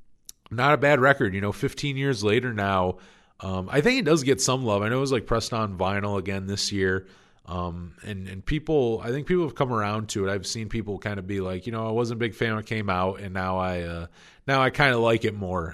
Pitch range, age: 100-130 Hz, 30-49